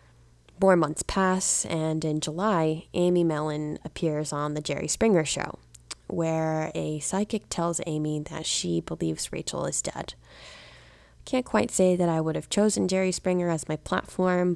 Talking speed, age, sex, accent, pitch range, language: 160 wpm, 20-39, female, American, 145-170 Hz, English